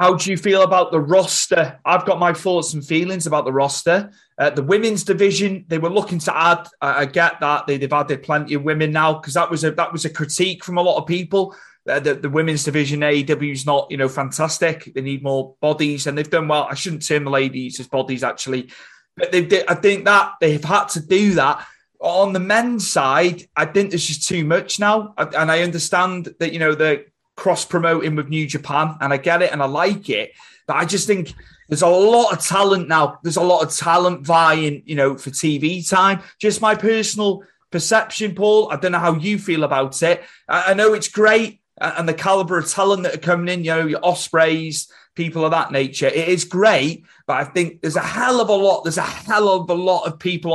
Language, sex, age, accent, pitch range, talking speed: English, male, 30-49, British, 150-190 Hz, 225 wpm